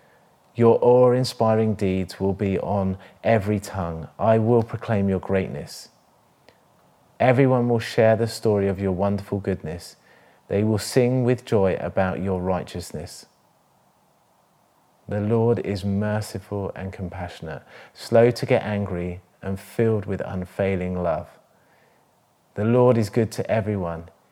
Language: English